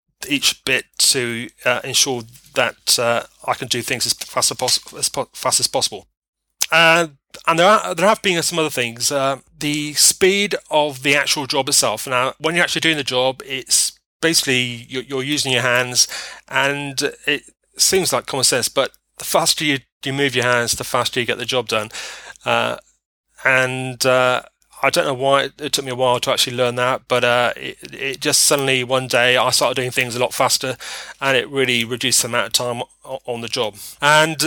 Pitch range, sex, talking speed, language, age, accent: 125-145 Hz, male, 200 wpm, English, 30-49, British